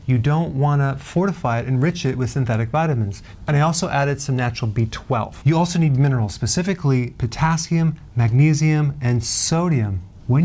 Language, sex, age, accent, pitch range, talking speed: English, male, 40-59, American, 115-150 Hz, 155 wpm